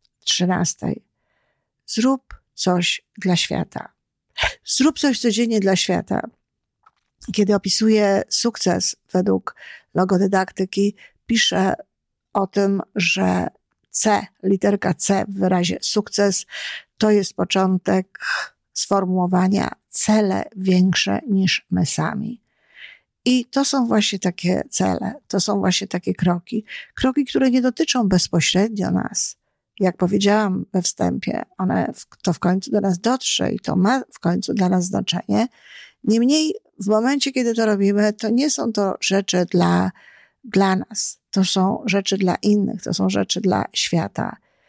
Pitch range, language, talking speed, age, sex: 185-220 Hz, Polish, 130 wpm, 50-69, female